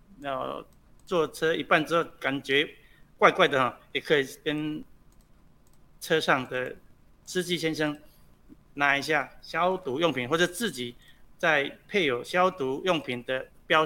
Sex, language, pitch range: male, Chinese, 125-165 Hz